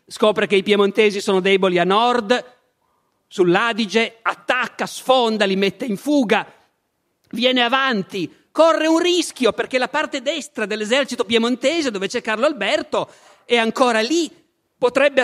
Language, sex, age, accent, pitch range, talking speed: Italian, male, 40-59, native, 175-260 Hz, 135 wpm